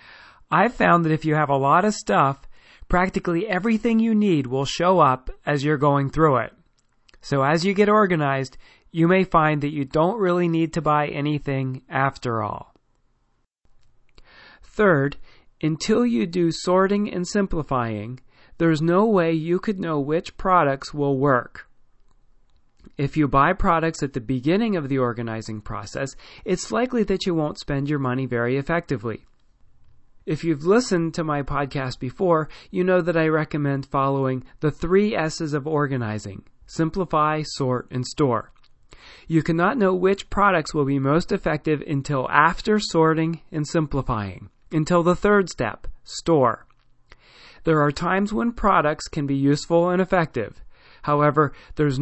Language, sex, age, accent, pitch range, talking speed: English, male, 40-59, American, 140-180 Hz, 150 wpm